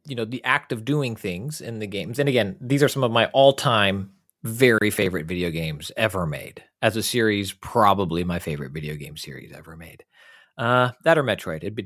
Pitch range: 105-150 Hz